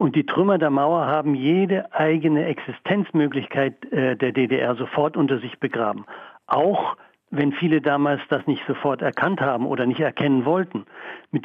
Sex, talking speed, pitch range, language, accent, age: male, 150 wpm, 130-160 Hz, German, German, 60-79